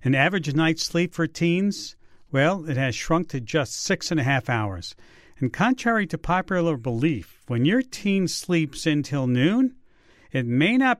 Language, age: English, 50-69